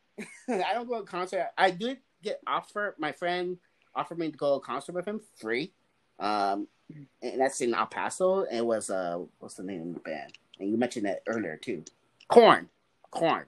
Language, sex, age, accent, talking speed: English, male, 30-49, American, 190 wpm